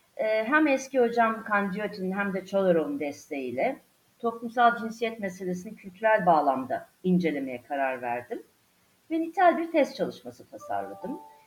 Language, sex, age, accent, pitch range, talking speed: Turkish, female, 50-69, native, 180-285 Hz, 115 wpm